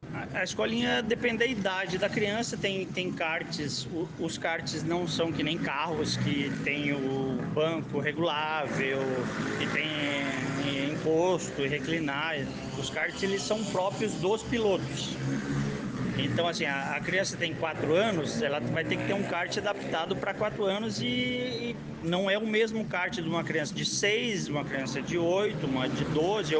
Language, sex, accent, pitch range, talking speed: Portuguese, male, Brazilian, 135-185 Hz, 160 wpm